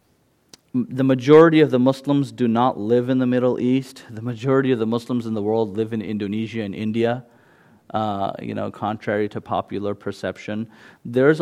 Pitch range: 110-130 Hz